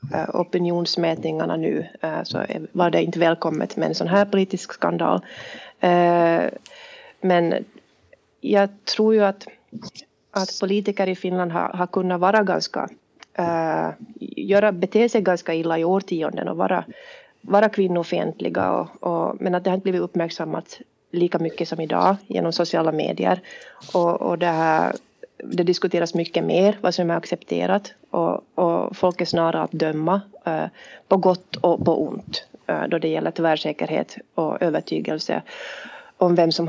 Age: 30-49